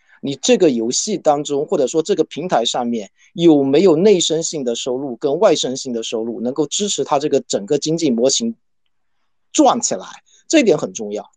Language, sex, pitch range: Chinese, male, 135-200 Hz